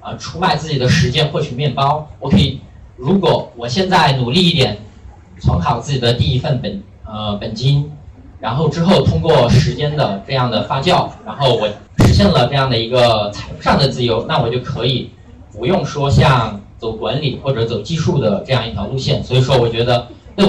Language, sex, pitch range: Chinese, male, 115-155 Hz